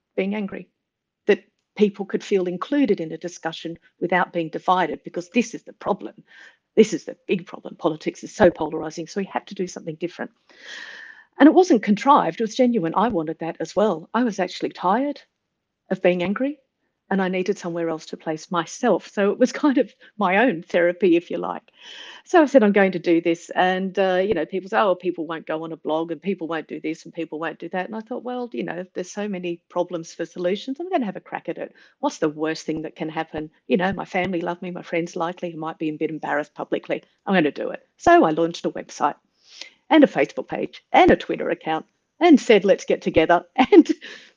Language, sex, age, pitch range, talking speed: English, female, 50-69, 170-225 Hz, 230 wpm